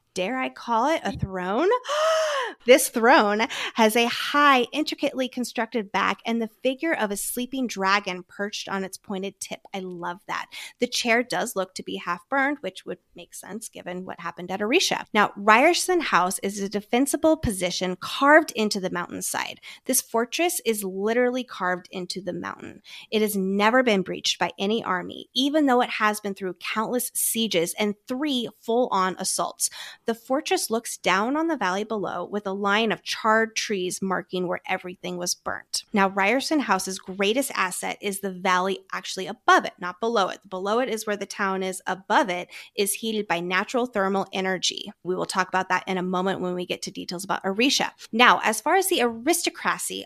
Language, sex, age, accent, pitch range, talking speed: English, female, 20-39, American, 185-245 Hz, 185 wpm